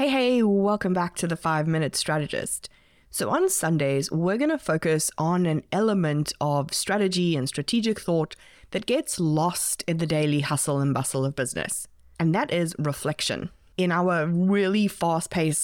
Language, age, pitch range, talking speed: English, 20-39, 155-200 Hz, 160 wpm